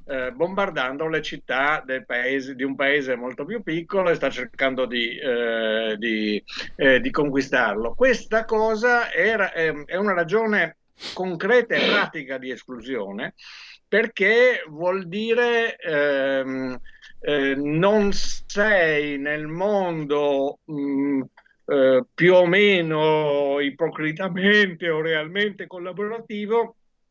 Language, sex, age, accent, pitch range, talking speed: Italian, male, 50-69, native, 130-180 Hz, 110 wpm